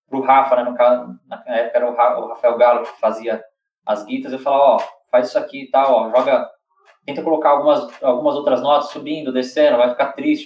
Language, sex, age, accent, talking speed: Portuguese, male, 20-39, Brazilian, 220 wpm